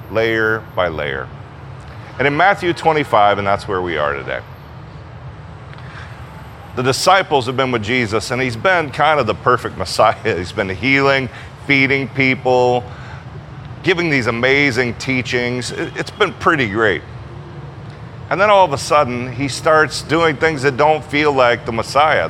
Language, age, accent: English, 40-59, American